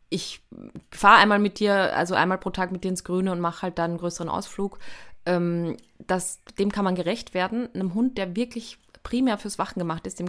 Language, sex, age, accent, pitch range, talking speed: German, female, 20-39, German, 170-195 Hz, 215 wpm